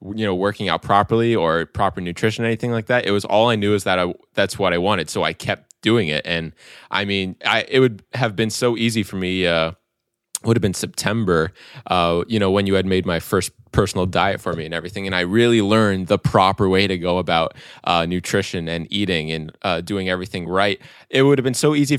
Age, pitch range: 20-39, 90-110 Hz